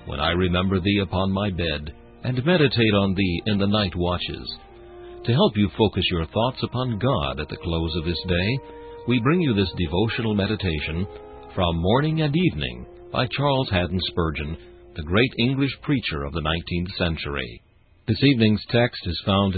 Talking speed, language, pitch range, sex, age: 170 wpm, English, 85-120 Hz, male, 60-79